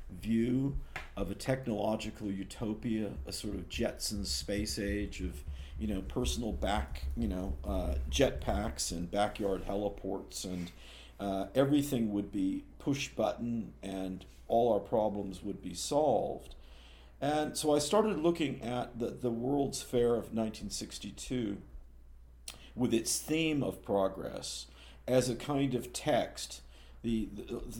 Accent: American